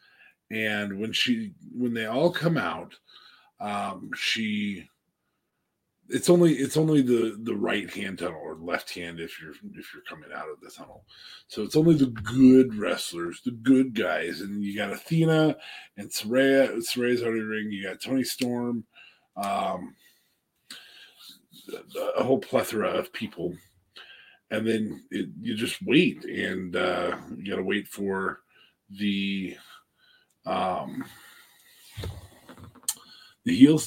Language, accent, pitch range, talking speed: English, American, 100-155 Hz, 135 wpm